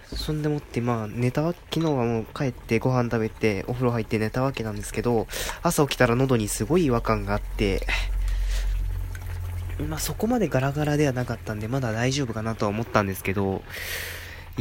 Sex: male